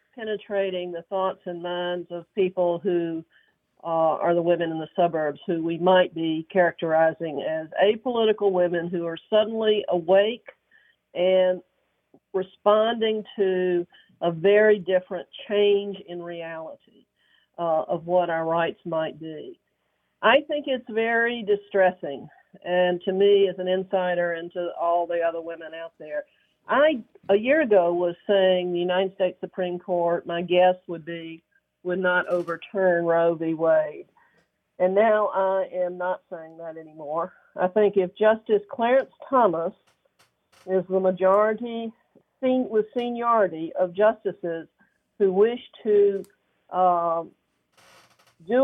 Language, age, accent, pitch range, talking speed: English, 50-69, American, 170-205 Hz, 135 wpm